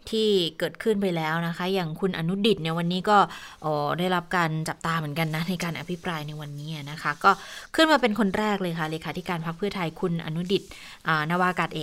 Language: Thai